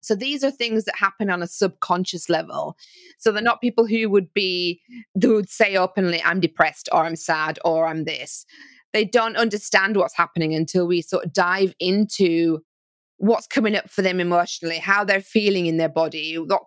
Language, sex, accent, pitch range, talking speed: English, female, British, 180-225 Hz, 190 wpm